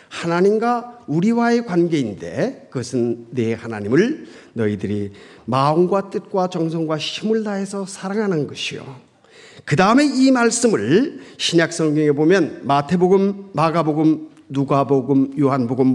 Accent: native